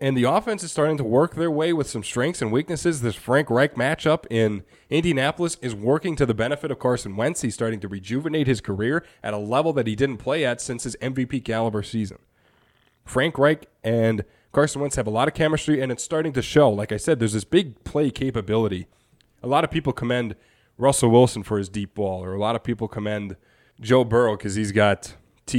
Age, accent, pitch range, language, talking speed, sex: 20-39, American, 105-135 Hz, English, 220 wpm, male